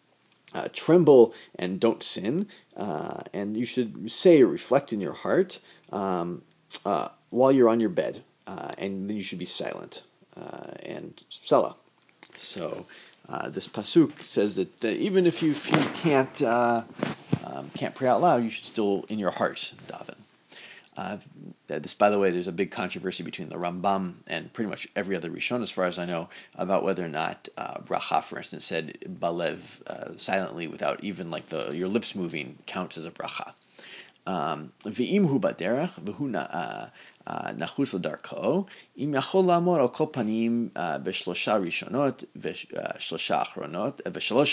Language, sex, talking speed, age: English, male, 155 wpm, 40-59